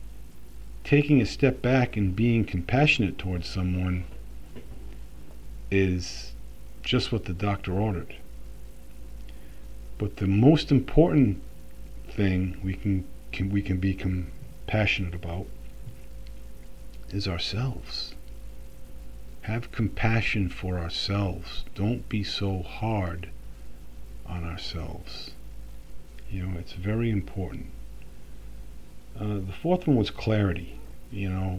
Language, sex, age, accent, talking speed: English, male, 50-69, American, 100 wpm